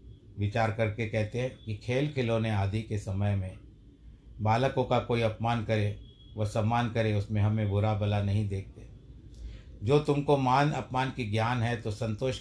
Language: Hindi